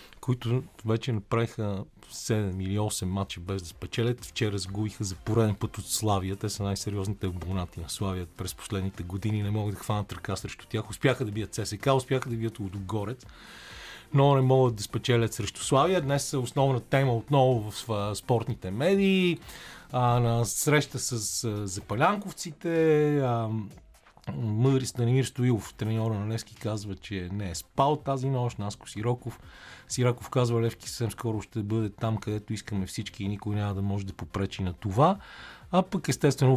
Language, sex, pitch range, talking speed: Bulgarian, male, 100-125 Hz, 165 wpm